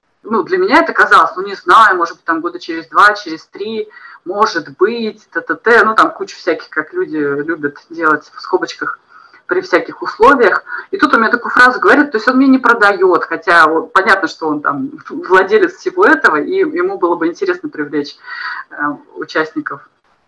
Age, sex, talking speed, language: 20-39, female, 190 wpm, Russian